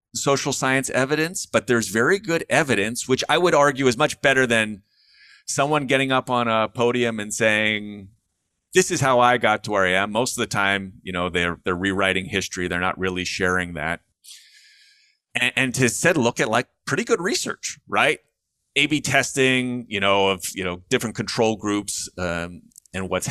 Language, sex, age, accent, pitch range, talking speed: English, male, 30-49, American, 100-135 Hz, 190 wpm